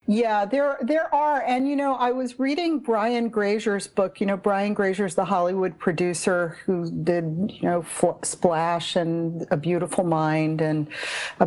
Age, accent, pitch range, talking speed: 50-69, American, 170-240 Hz, 165 wpm